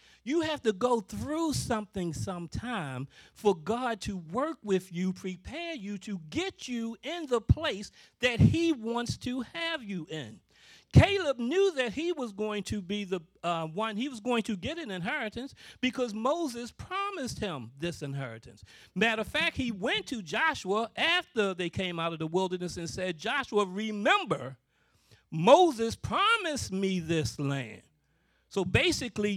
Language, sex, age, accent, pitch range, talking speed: English, male, 40-59, American, 175-270 Hz, 155 wpm